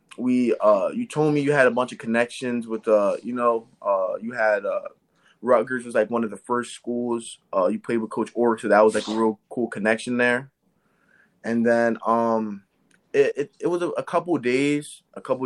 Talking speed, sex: 215 wpm, male